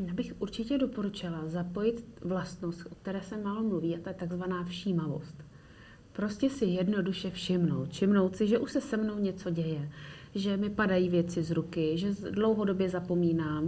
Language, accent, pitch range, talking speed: Czech, native, 170-210 Hz, 160 wpm